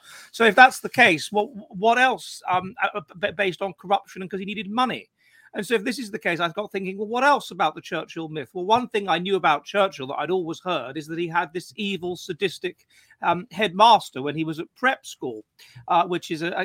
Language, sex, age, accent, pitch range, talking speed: English, male, 40-59, British, 155-195 Hz, 225 wpm